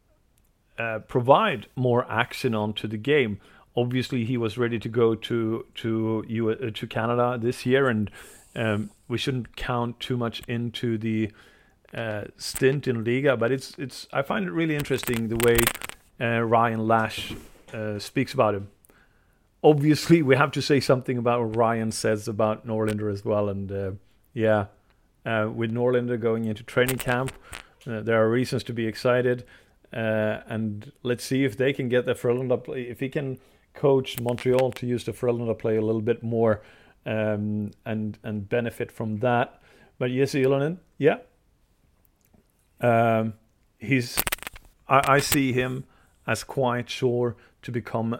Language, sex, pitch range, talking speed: English, male, 110-125 Hz, 160 wpm